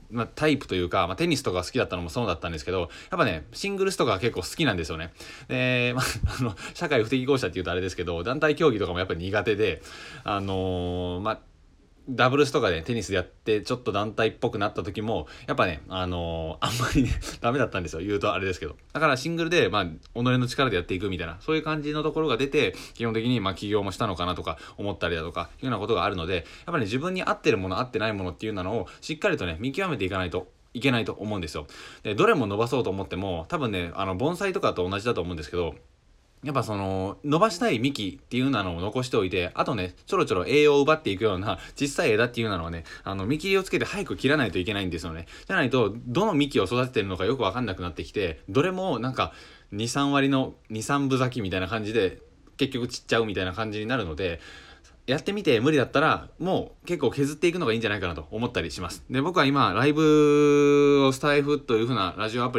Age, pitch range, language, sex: 20-39, 95-140 Hz, Japanese, male